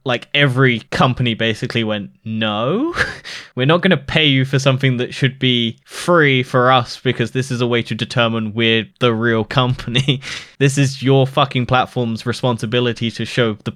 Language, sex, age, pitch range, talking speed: English, male, 10-29, 110-130 Hz, 175 wpm